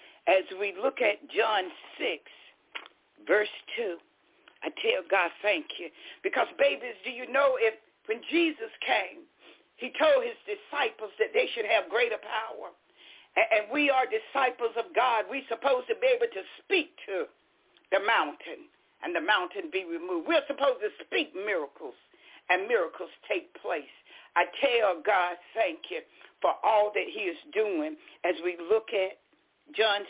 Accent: American